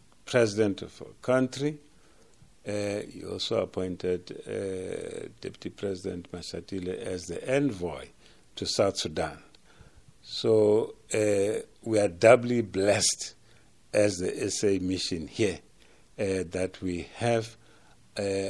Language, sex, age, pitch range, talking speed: English, male, 50-69, 95-120 Hz, 110 wpm